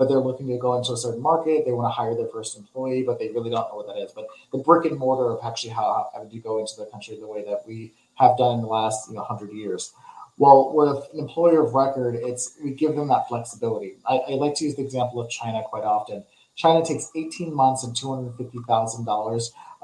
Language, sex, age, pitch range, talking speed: English, male, 30-49, 115-150 Hz, 245 wpm